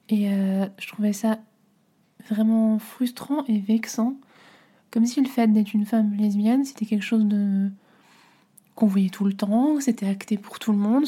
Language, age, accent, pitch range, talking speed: French, 20-39, French, 205-230 Hz, 180 wpm